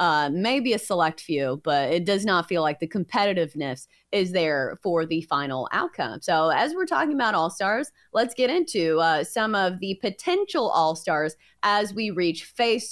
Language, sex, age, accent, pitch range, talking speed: English, female, 30-49, American, 165-230 Hz, 175 wpm